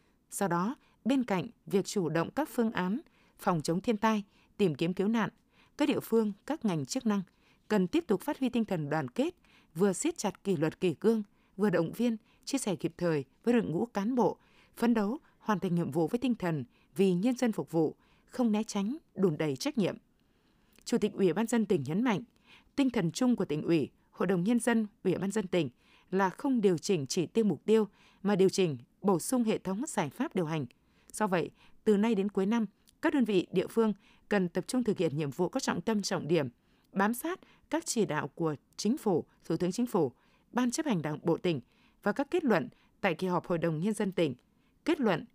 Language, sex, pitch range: Vietnamese, female, 180-235 Hz